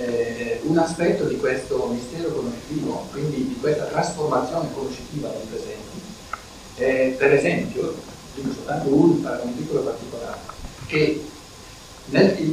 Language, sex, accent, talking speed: Italian, male, native, 120 wpm